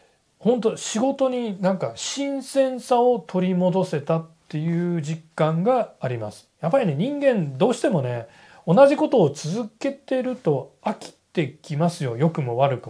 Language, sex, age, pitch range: Japanese, male, 40-59, 135-210 Hz